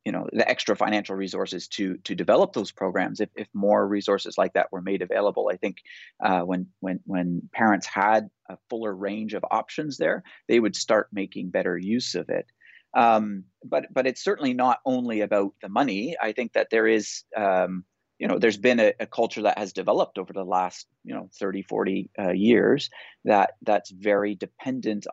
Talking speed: 195 wpm